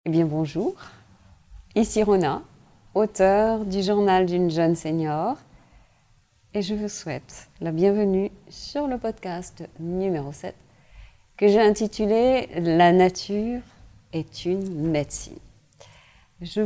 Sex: female